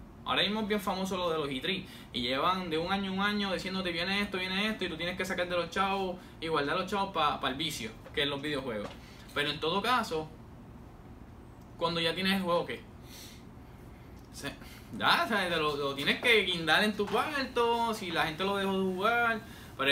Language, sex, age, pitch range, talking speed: English, male, 10-29, 150-185 Hz, 220 wpm